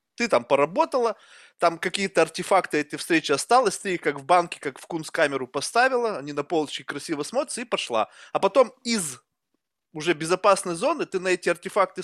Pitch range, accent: 160-225 Hz, native